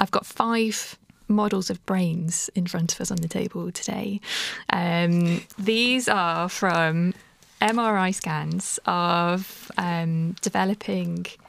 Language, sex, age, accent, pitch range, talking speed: English, female, 20-39, British, 180-225 Hz, 120 wpm